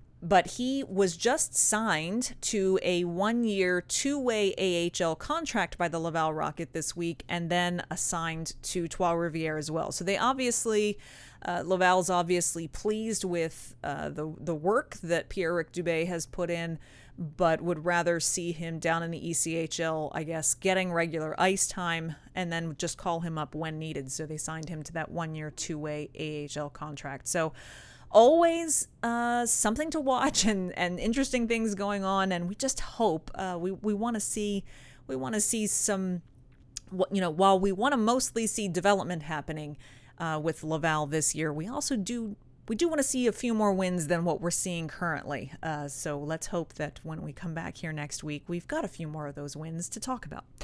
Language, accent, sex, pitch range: English, American, female, 155-200 Hz